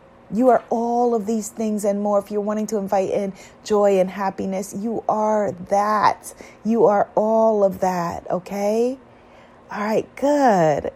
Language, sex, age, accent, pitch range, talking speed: English, female, 30-49, American, 160-210 Hz, 160 wpm